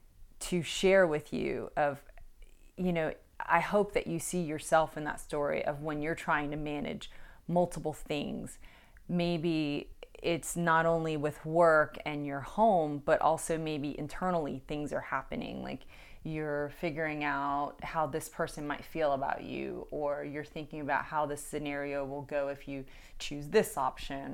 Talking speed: 160 wpm